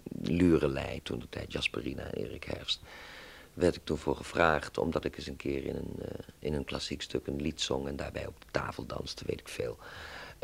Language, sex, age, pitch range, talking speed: Dutch, male, 50-69, 70-85 Hz, 200 wpm